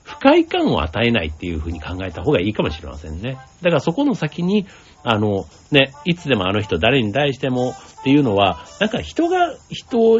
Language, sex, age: Japanese, male, 60-79